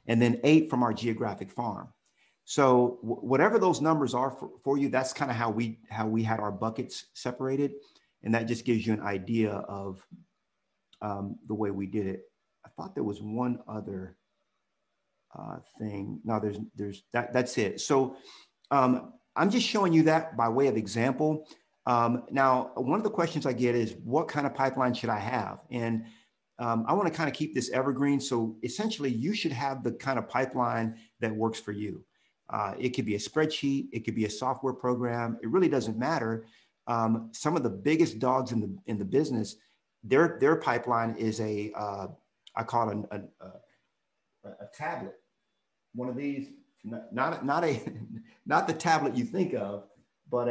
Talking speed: 190 wpm